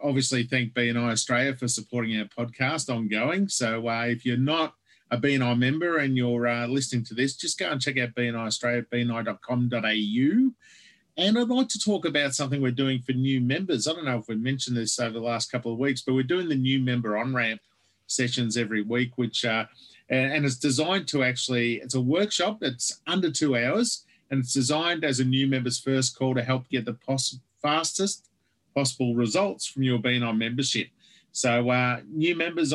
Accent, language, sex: Australian, English, male